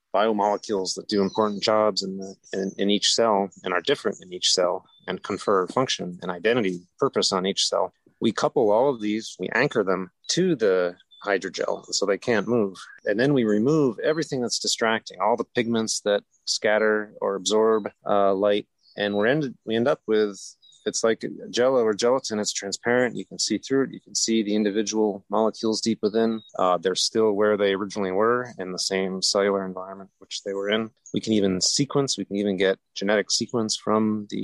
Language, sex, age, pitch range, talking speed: English, male, 30-49, 95-115 Hz, 195 wpm